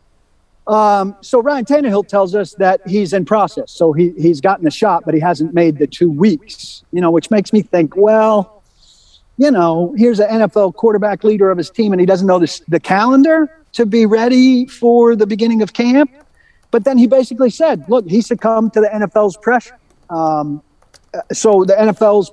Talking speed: 185 wpm